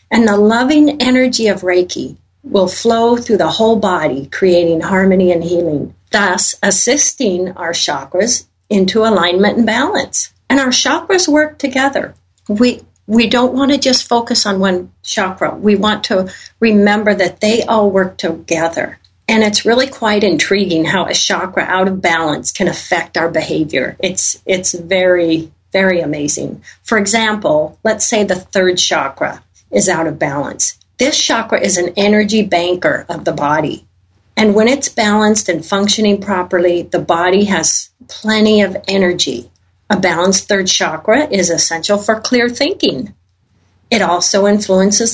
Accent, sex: American, female